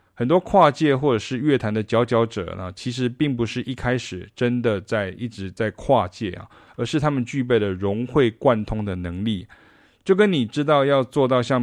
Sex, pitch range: male, 100-130 Hz